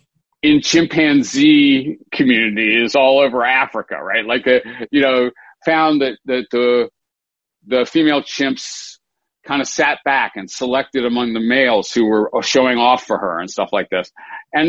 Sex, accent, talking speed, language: male, American, 155 wpm, English